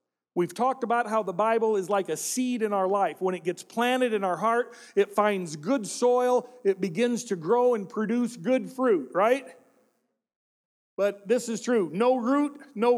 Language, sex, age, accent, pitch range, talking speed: English, male, 40-59, American, 195-250 Hz, 185 wpm